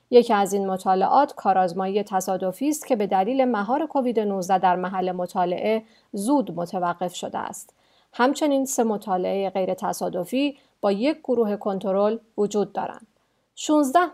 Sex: female